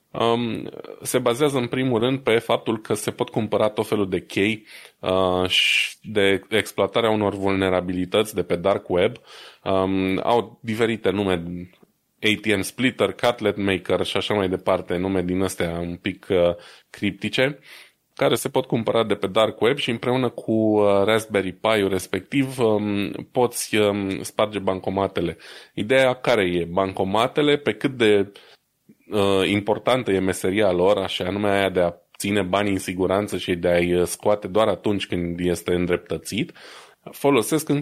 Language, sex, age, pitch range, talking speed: Romanian, male, 20-39, 95-110 Hz, 150 wpm